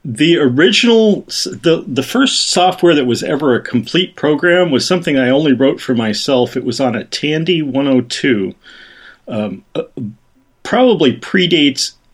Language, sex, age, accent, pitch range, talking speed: English, male, 40-59, American, 120-140 Hz, 145 wpm